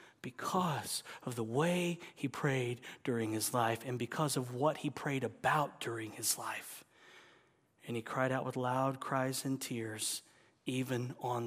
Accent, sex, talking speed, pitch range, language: American, male, 155 wpm, 130-165 Hz, English